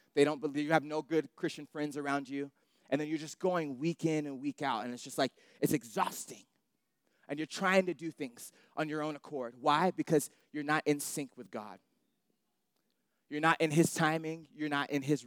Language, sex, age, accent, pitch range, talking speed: English, male, 20-39, American, 145-175 Hz, 210 wpm